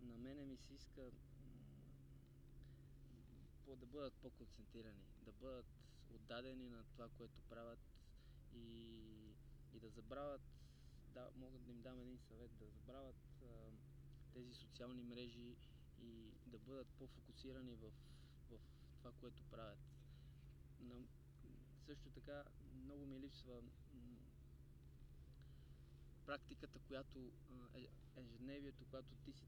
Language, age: Bulgarian, 20-39